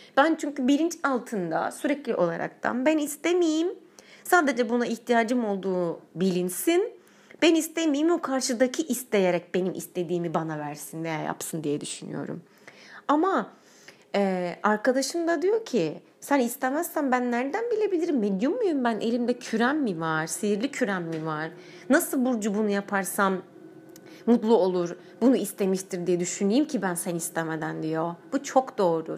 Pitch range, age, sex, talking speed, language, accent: 180-295 Hz, 30-49, female, 135 wpm, Turkish, native